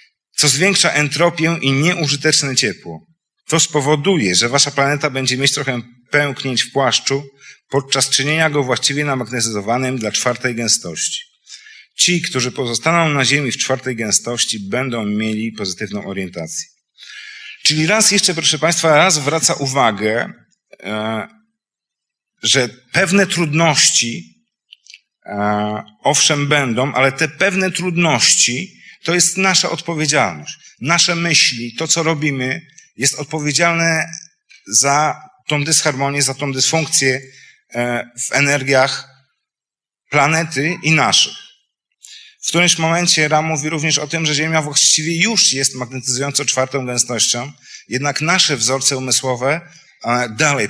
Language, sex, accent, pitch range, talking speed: Polish, male, native, 125-160 Hz, 115 wpm